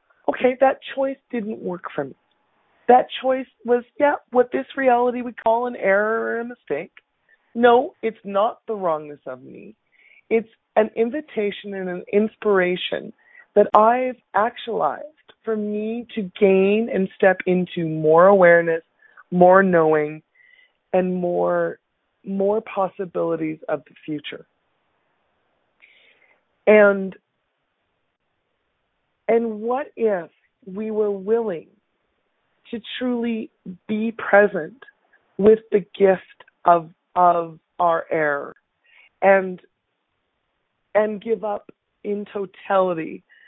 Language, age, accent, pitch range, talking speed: English, 40-59, American, 180-235 Hz, 110 wpm